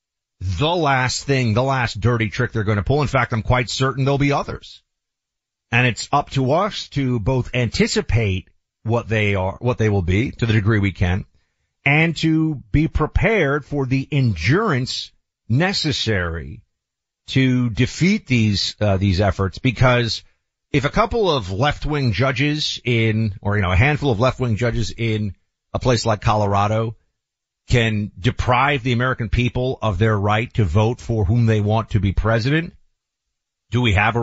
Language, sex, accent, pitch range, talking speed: English, male, American, 110-140 Hz, 170 wpm